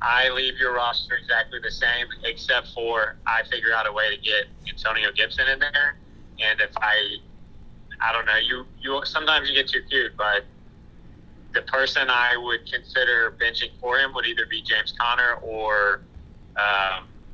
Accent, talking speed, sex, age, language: American, 175 wpm, male, 30-49, English